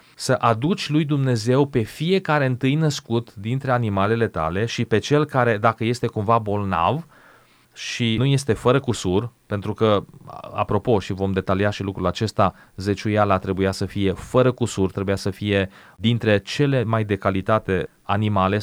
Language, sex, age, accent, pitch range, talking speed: Romanian, male, 30-49, native, 105-130 Hz, 155 wpm